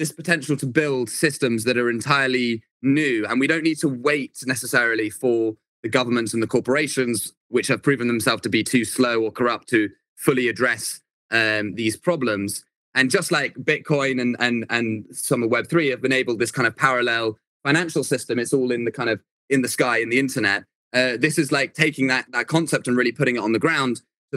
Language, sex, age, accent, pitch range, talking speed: English, male, 20-39, British, 115-140 Hz, 205 wpm